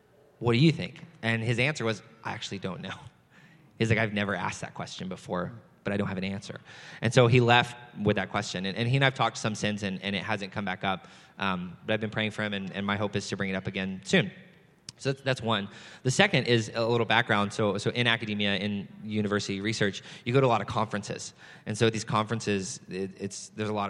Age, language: 20-39, English